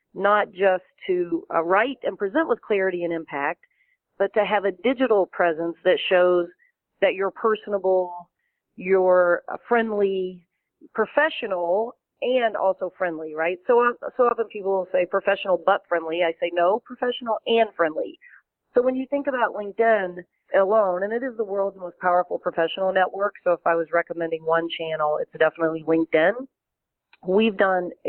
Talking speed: 155 wpm